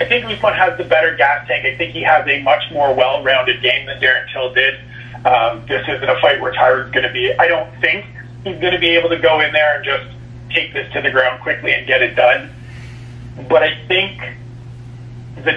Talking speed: 225 wpm